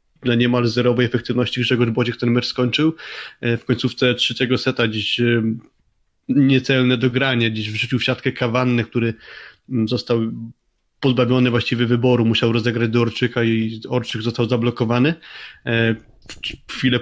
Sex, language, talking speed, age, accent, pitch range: male, Polish, 125 wpm, 20-39, native, 120-130 Hz